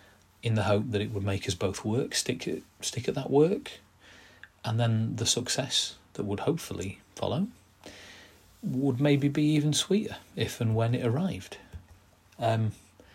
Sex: male